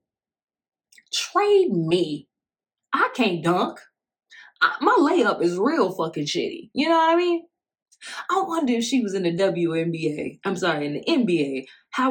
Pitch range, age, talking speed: 155-220 Hz, 20-39, 155 wpm